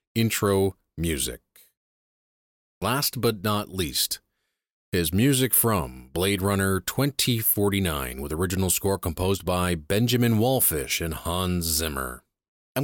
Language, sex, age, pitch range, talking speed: English, male, 30-49, 85-120 Hz, 105 wpm